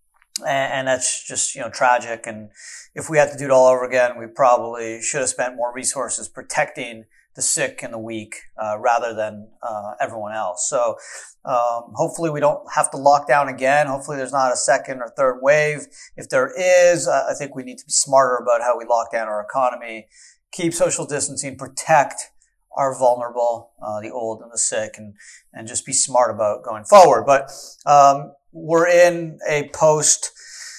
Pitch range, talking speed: 120-145 Hz, 190 wpm